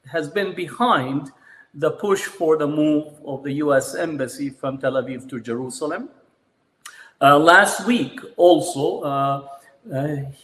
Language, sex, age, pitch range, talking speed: English, male, 50-69, 135-160 Hz, 130 wpm